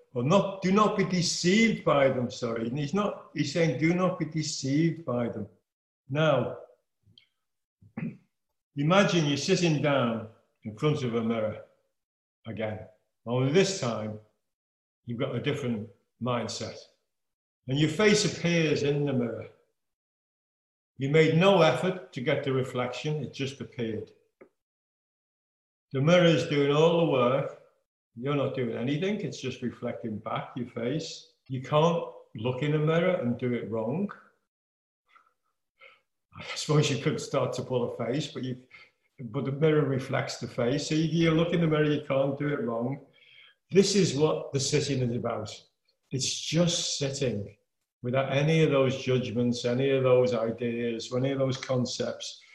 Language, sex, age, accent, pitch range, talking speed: English, male, 60-79, British, 120-160 Hz, 155 wpm